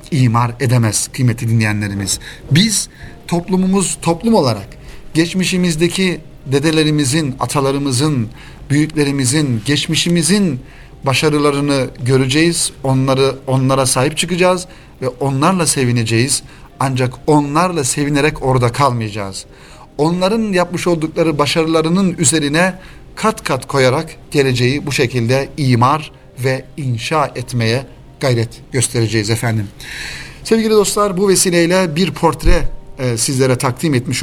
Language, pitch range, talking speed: Turkish, 120-155 Hz, 95 wpm